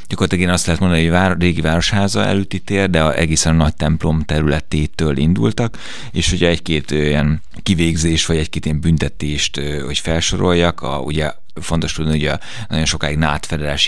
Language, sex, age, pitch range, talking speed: Hungarian, male, 30-49, 75-85 Hz, 175 wpm